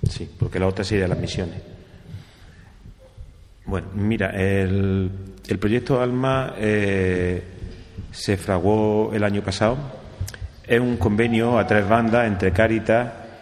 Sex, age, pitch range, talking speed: male, 30-49, 90-110 Hz, 120 wpm